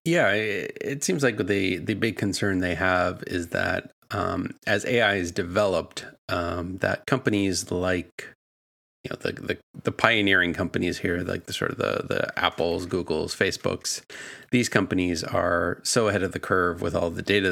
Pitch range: 85-100 Hz